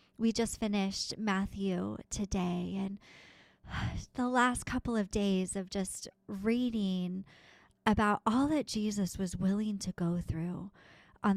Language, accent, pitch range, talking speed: English, American, 185-235 Hz, 125 wpm